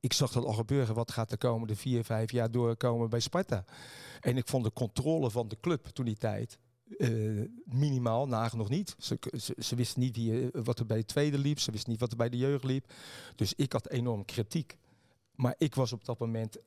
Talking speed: 225 wpm